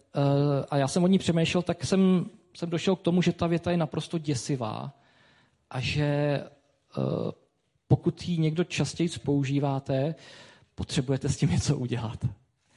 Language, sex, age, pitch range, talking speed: Czech, male, 40-59, 140-175 Hz, 150 wpm